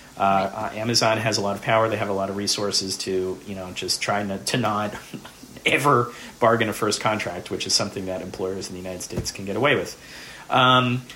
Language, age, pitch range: English, 30-49, 100-125 Hz